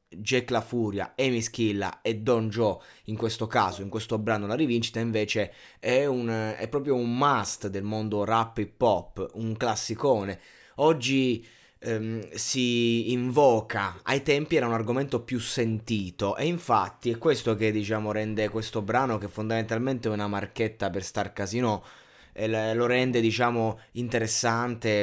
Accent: native